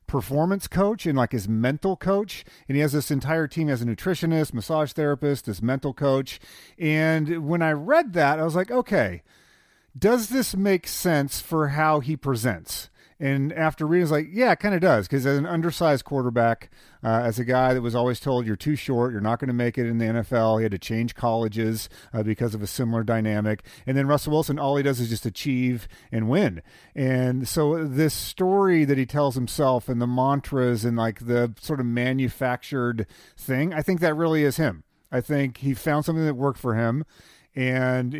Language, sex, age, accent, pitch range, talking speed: English, male, 40-59, American, 120-155 Hz, 205 wpm